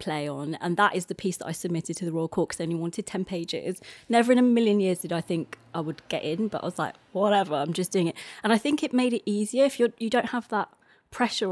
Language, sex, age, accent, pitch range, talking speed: English, female, 20-39, British, 175-220 Hz, 285 wpm